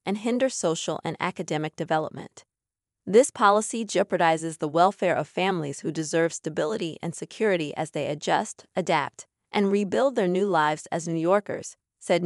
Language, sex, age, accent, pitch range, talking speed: English, female, 30-49, American, 165-210 Hz, 150 wpm